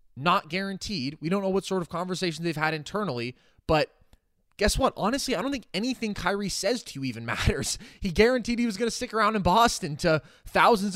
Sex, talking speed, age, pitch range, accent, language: male, 210 wpm, 20-39, 155-225 Hz, American, English